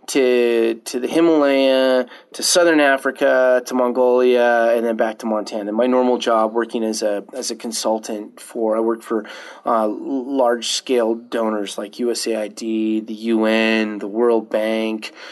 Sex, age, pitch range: male, 30-49, 115-160 Hz